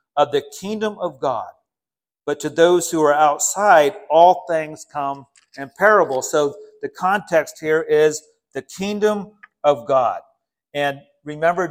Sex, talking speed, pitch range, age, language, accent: male, 140 wpm, 145-190 Hz, 40-59, English, American